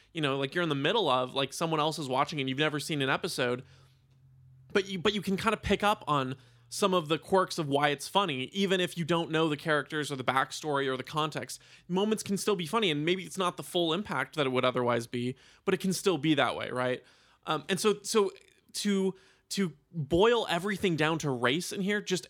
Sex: male